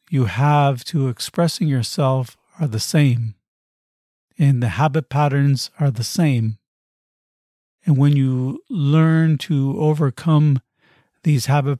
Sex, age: male, 50-69